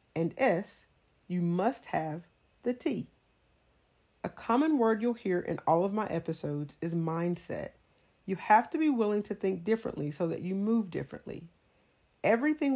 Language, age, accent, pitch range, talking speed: English, 40-59, American, 165-215 Hz, 155 wpm